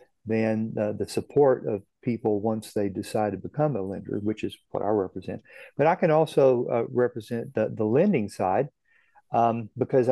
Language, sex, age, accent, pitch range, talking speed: English, male, 50-69, American, 115-140 Hz, 180 wpm